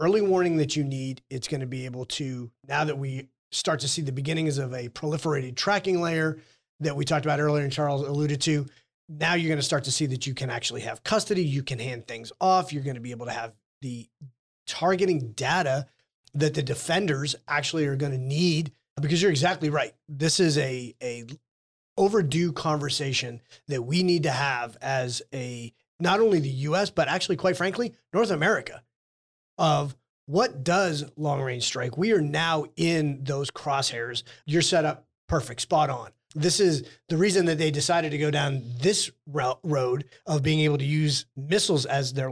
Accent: American